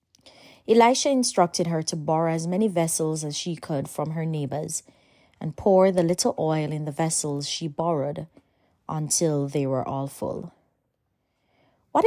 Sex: female